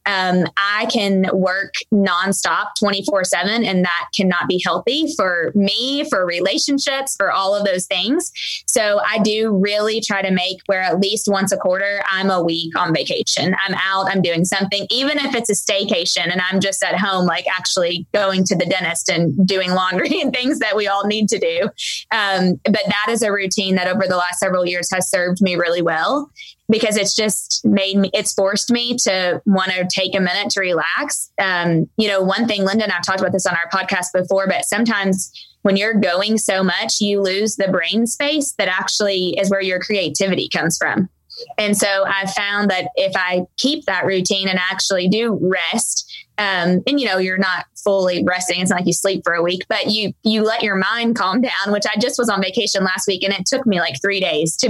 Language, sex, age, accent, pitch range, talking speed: English, female, 20-39, American, 185-215 Hz, 210 wpm